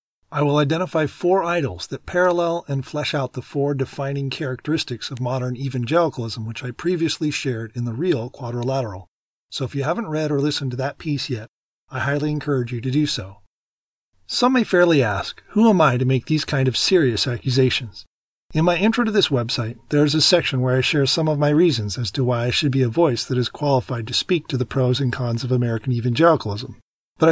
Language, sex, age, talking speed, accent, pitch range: English, male, 40-59, 210 wpm, American, 120-155 Hz